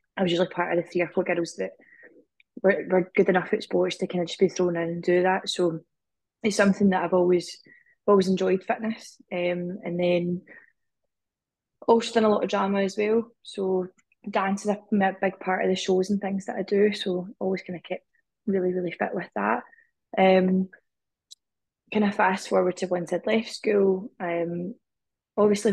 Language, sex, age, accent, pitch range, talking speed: English, female, 20-39, British, 180-205 Hz, 195 wpm